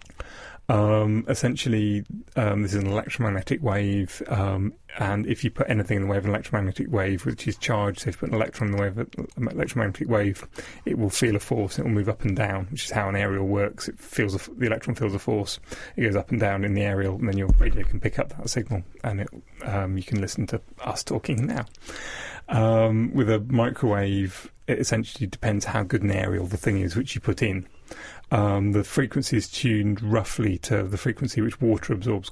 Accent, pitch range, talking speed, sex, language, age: British, 100-115 Hz, 220 wpm, male, English, 30-49